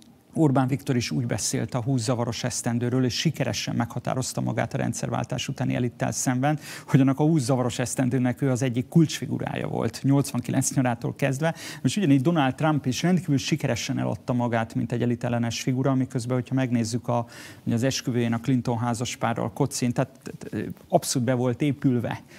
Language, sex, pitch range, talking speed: Hungarian, male, 120-145 Hz, 160 wpm